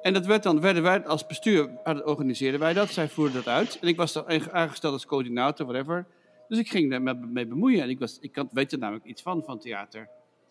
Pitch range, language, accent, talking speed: 140-195 Hz, English, Dutch, 230 wpm